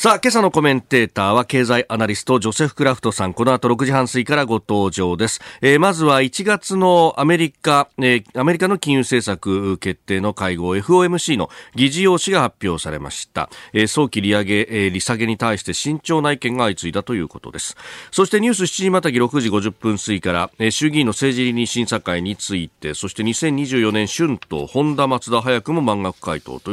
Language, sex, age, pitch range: Japanese, male, 40-59, 100-150 Hz